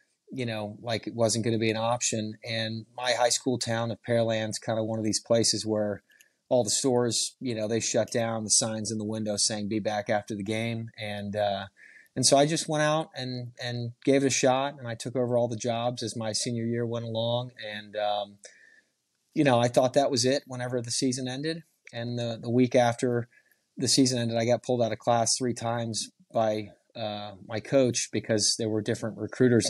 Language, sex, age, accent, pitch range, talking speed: English, male, 30-49, American, 110-125 Hz, 220 wpm